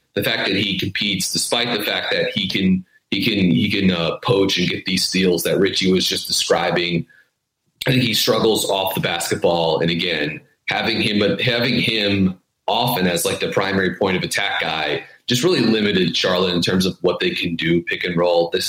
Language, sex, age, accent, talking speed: English, male, 30-49, American, 205 wpm